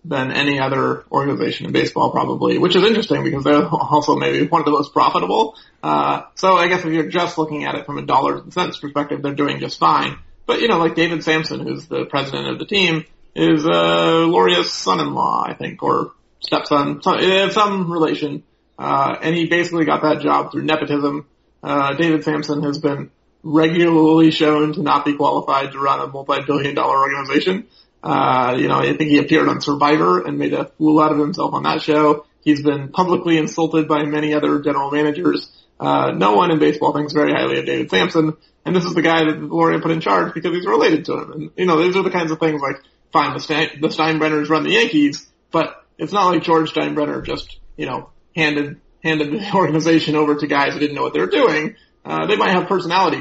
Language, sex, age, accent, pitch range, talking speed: English, male, 30-49, American, 145-165 Hz, 210 wpm